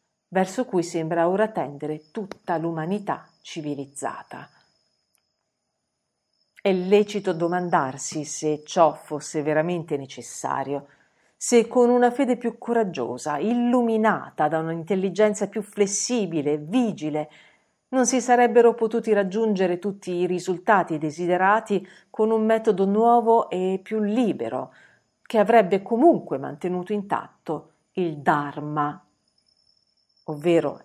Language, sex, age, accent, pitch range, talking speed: Italian, female, 50-69, native, 155-215 Hz, 105 wpm